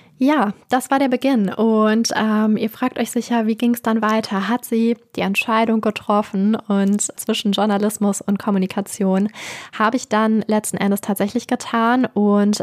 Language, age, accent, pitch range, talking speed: German, 10-29, German, 195-230 Hz, 160 wpm